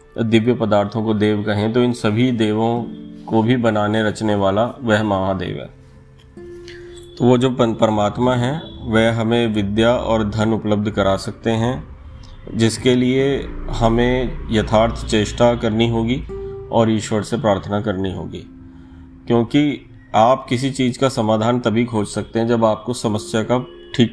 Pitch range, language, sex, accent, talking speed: 105-120 Hz, Hindi, male, native, 145 wpm